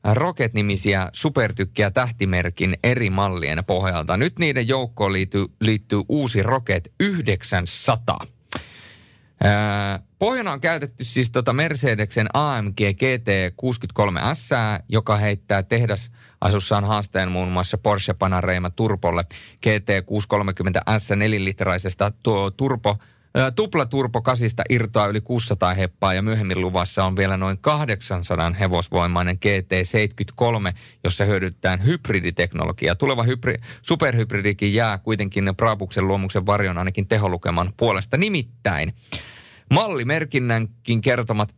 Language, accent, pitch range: Finnish, native, 95-120 Hz